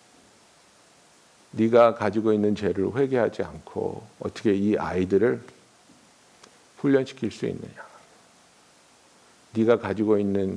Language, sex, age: Korean, male, 50-69